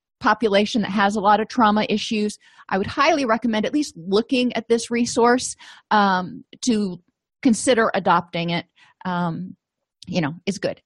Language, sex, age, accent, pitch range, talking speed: English, female, 30-49, American, 195-250 Hz, 155 wpm